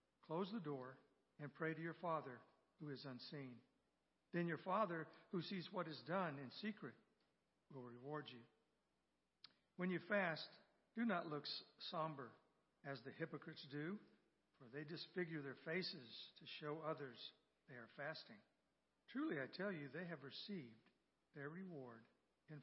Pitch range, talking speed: 140-180 Hz, 150 wpm